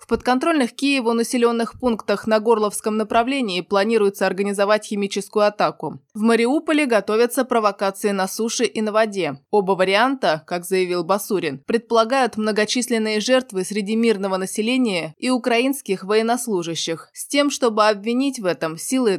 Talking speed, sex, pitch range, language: 130 wpm, female, 190-235 Hz, Russian